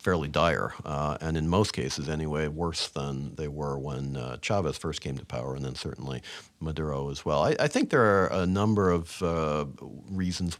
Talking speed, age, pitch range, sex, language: 200 wpm, 50-69, 80-100 Hz, male, English